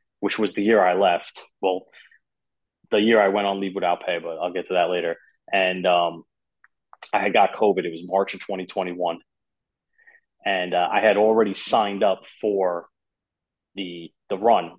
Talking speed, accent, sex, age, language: 175 wpm, American, male, 30-49, English